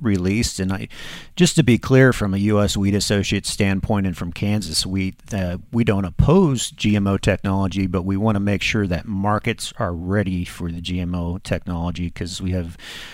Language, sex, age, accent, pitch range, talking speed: English, male, 40-59, American, 95-115 Hz, 185 wpm